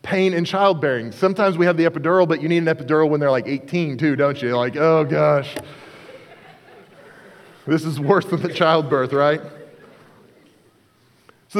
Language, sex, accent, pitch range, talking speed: English, male, American, 150-185 Hz, 160 wpm